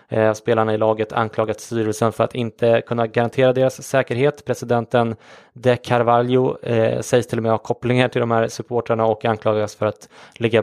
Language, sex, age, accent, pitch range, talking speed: English, male, 20-39, Swedish, 110-125 Hz, 170 wpm